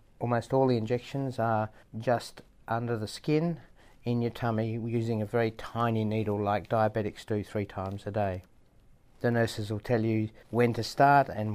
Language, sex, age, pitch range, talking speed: English, male, 60-79, 105-120 Hz, 170 wpm